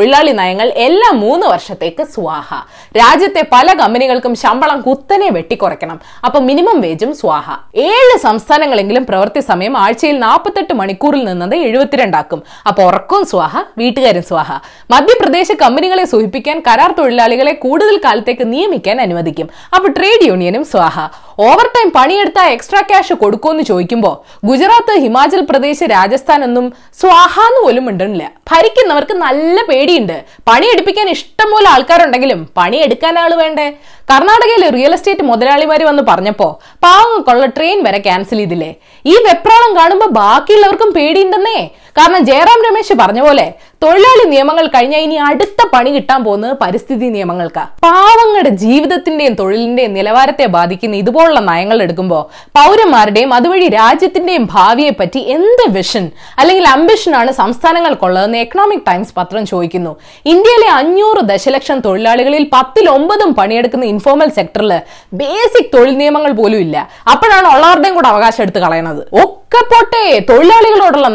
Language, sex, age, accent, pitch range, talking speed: Malayalam, female, 20-39, native, 230-380 Hz, 110 wpm